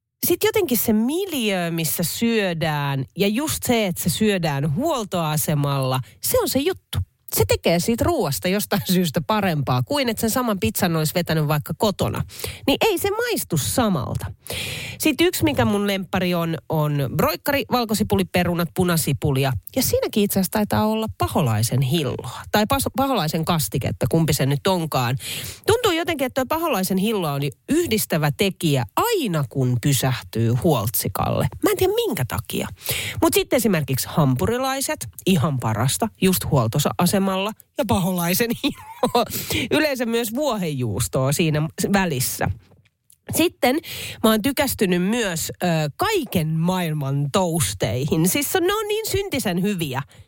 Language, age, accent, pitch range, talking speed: Finnish, 30-49, native, 145-235 Hz, 135 wpm